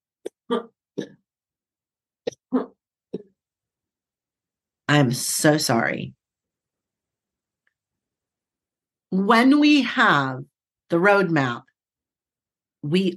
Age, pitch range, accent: 50-69, 160-205 Hz, American